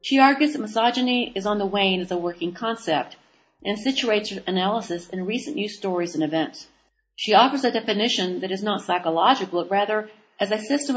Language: English